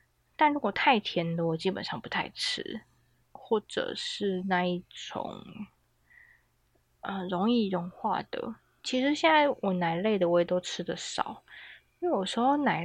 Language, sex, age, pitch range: Chinese, female, 20-39, 175-250 Hz